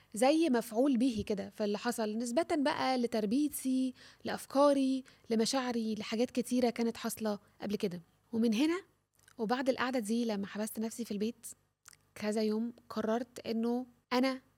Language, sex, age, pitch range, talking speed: Arabic, female, 20-39, 215-250 Hz, 130 wpm